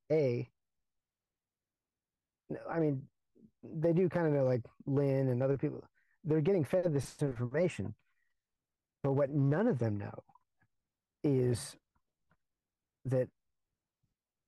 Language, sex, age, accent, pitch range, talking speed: English, male, 40-59, American, 125-165 Hz, 110 wpm